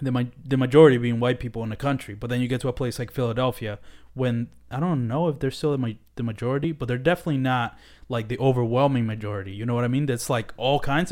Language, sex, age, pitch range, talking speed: English, male, 20-39, 115-135 Hz, 230 wpm